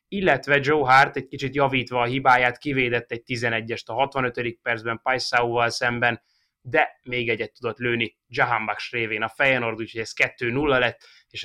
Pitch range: 120-135 Hz